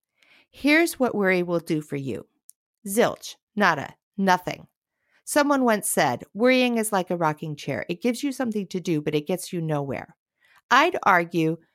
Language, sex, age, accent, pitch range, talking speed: English, female, 50-69, American, 165-250 Hz, 165 wpm